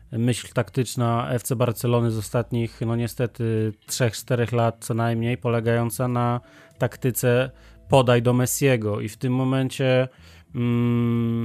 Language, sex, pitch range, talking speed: Polish, male, 115-125 Hz, 120 wpm